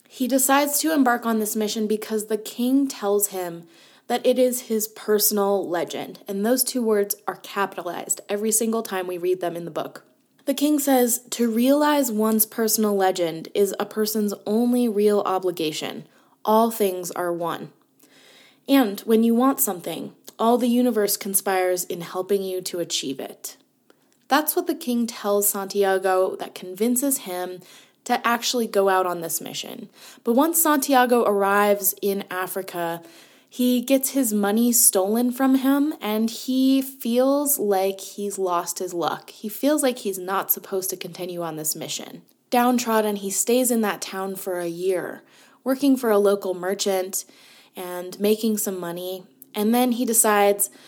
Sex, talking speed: female, 160 wpm